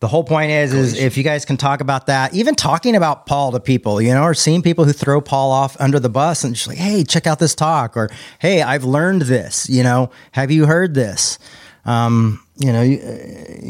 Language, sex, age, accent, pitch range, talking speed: English, male, 30-49, American, 110-140 Hz, 235 wpm